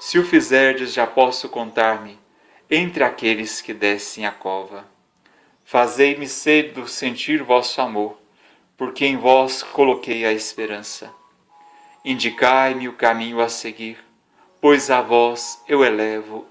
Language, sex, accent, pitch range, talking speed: Portuguese, male, Brazilian, 115-145 Hz, 120 wpm